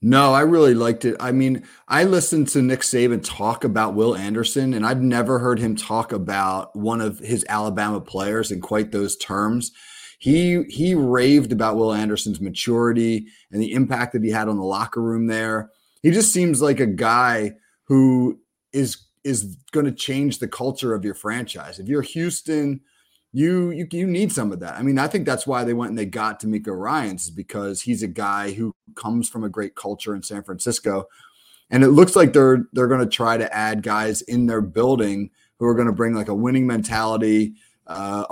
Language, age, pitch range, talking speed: English, 30-49, 105-130 Hz, 200 wpm